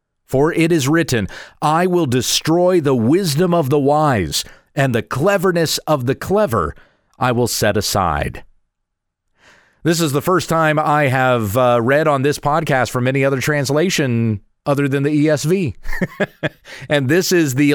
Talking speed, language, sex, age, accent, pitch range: 155 wpm, English, male, 40-59, American, 120-150 Hz